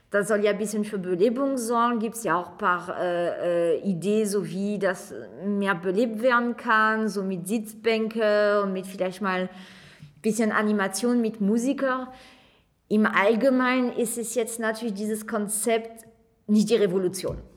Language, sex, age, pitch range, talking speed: German, female, 20-39, 205-245 Hz, 155 wpm